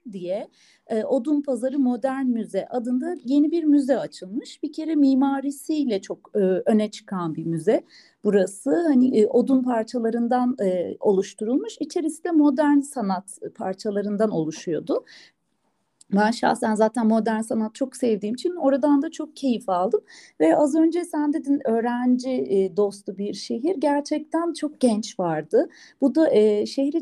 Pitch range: 210-280 Hz